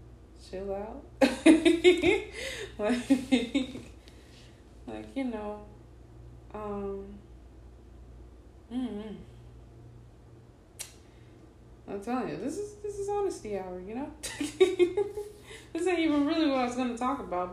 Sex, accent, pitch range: female, American, 160-230 Hz